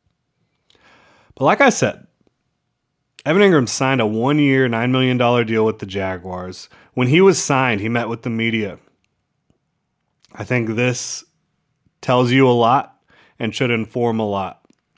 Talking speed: 145 wpm